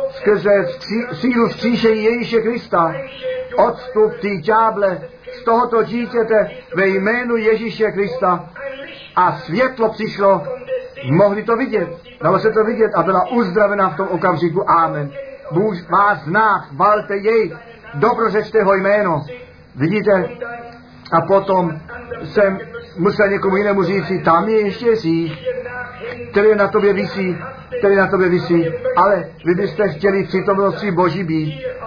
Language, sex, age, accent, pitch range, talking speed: Czech, male, 50-69, native, 175-220 Hz, 130 wpm